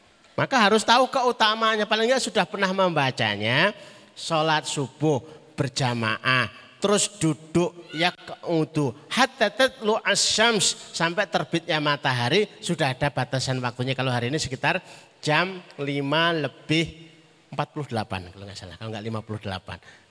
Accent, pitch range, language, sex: native, 125-180 Hz, Indonesian, male